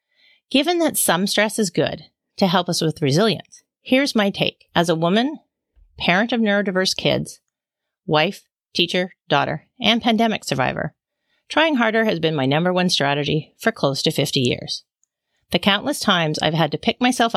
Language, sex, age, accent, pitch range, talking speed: English, female, 40-59, American, 160-230 Hz, 165 wpm